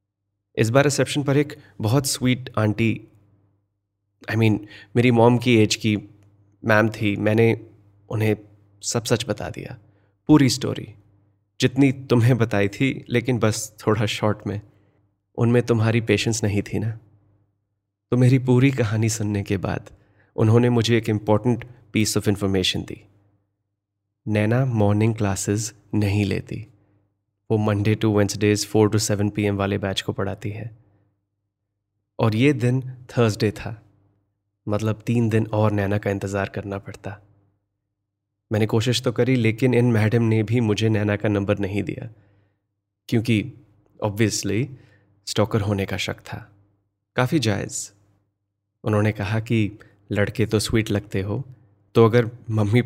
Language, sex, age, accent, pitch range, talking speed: Hindi, male, 30-49, native, 100-115 Hz, 140 wpm